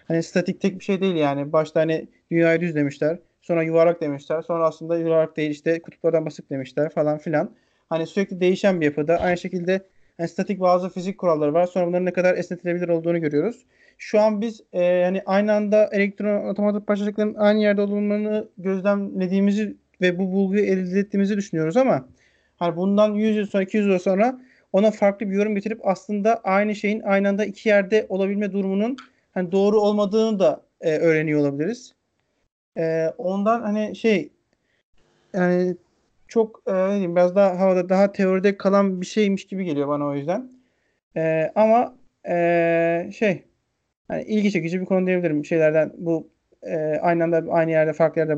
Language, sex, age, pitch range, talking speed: Turkish, male, 40-59, 165-205 Hz, 165 wpm